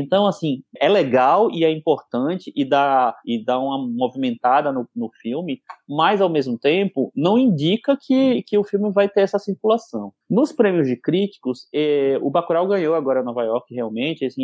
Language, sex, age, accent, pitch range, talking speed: Portuguese, male, 20-39, Brazilian, 135-190 Hz, 175 wpm